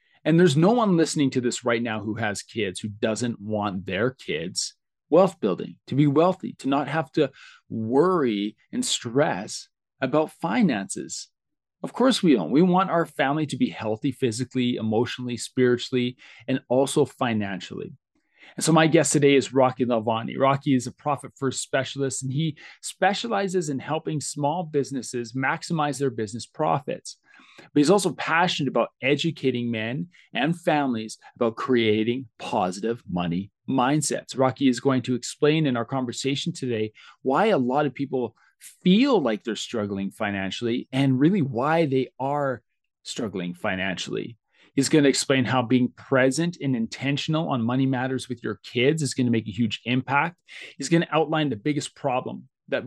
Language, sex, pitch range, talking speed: English, male, 120-150 Hz, 160 wpm